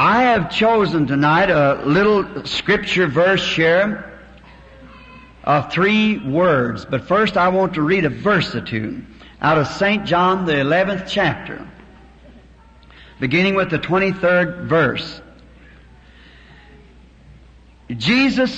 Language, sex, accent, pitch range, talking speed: English, male, American, 145-200 Hz, 115 wpm